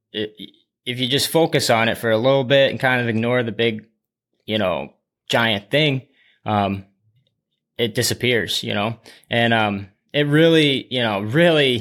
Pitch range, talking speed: 110-135 Hz, 165 wpm